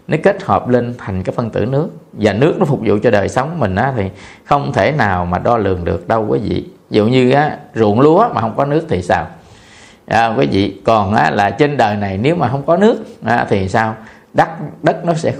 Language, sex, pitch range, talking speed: Vietnamese, male, 105-155 Hz, 240 wpm